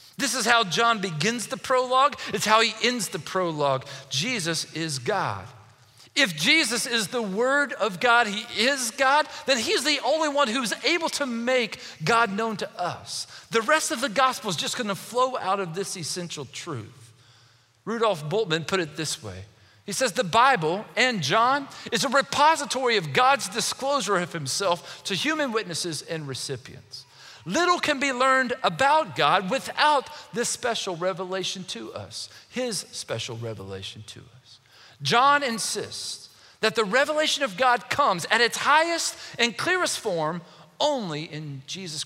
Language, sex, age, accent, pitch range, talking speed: English, male, 40-59, American, 160-260 Hz, 160 wpm